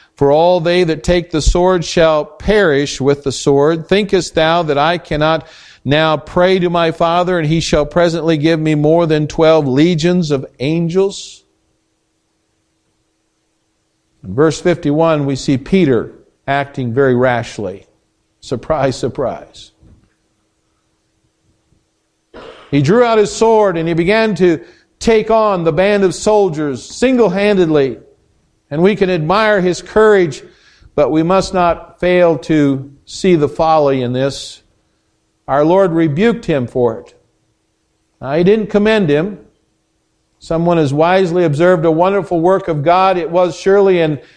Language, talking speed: English, 135 wpm